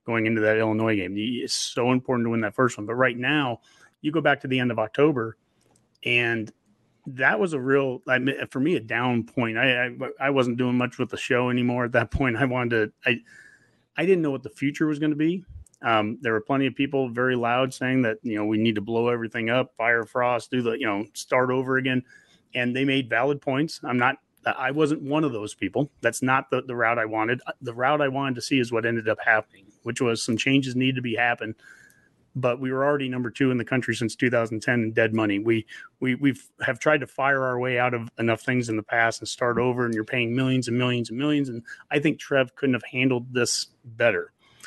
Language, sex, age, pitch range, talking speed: English, male, 30-49, 115-135 Hz, 235 wpm